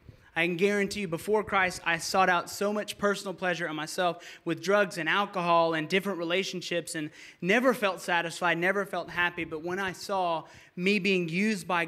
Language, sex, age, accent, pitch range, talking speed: English, male, 20-39, American, 165-195 Hz, 185 wpm